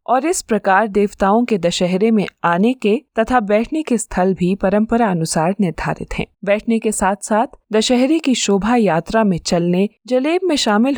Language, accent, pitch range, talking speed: Hindi, native, 180-225 Hz, 170 wpm